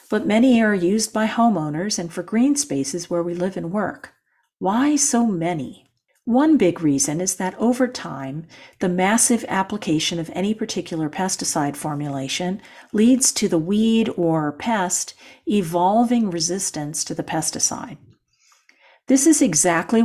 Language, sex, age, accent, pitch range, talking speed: English, female, 50-69, American, 165-225 Hz, 140 wpm